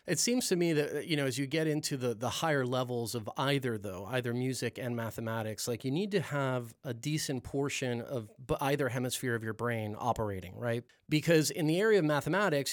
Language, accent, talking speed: English, American, 205 wpm